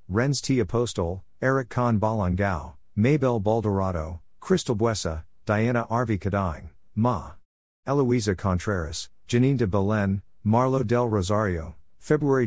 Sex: male